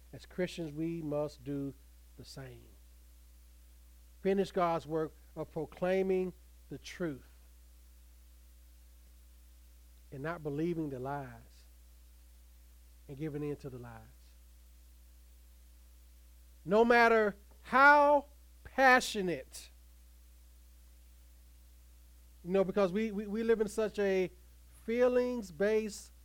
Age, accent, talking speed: 40-59, American, 90 wpm